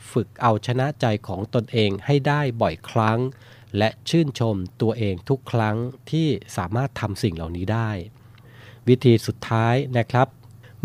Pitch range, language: 110-125 Hz, Thai